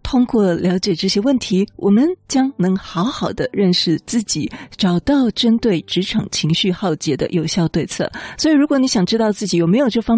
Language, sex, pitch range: Chinese, female, 170-225 Hz